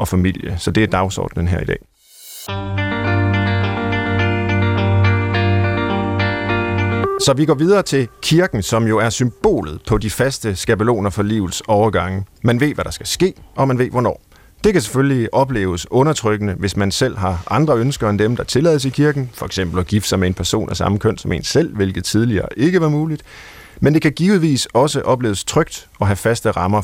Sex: male